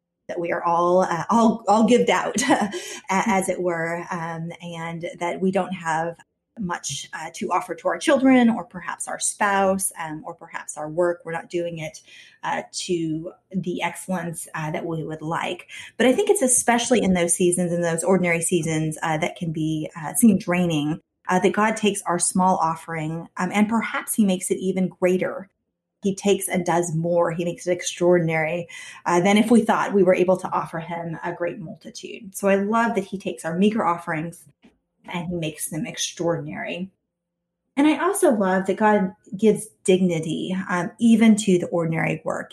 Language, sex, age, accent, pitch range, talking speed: English, female, 20-39, American, 170-195 Hz, 185 wpm